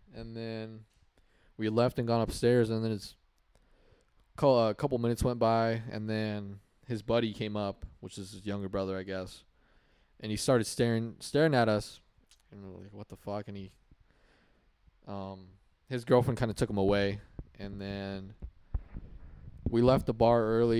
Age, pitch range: 20-39, 100-115 Hz